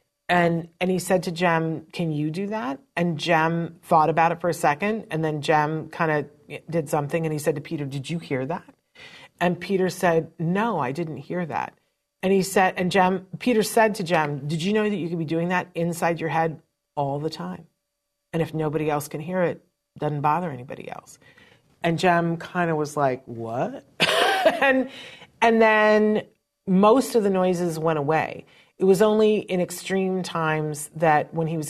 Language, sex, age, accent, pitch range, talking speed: English, female, 40-59, American, 155-195 Hz, 195 wpm